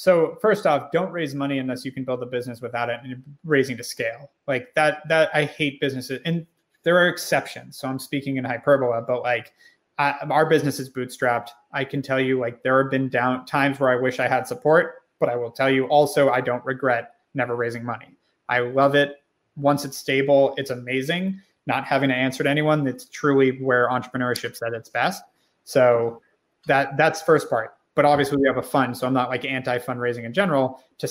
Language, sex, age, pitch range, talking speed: English, male, 20-39, 125-145 Hz, 210 wpm